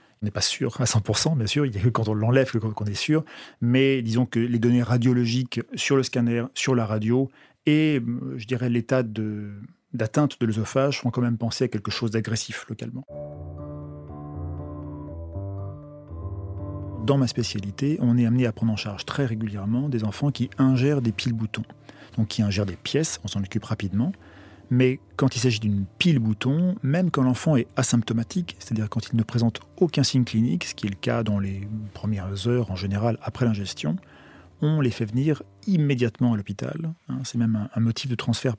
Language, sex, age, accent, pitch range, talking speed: French, male, 40-59, French, 105-130 Hz, 185 wpm